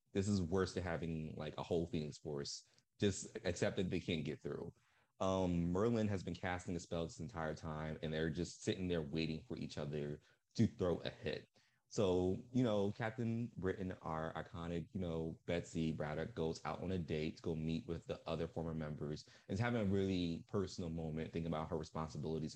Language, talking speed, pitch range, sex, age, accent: English, 200 wpm, 80-95 Hz, male, 20-39, American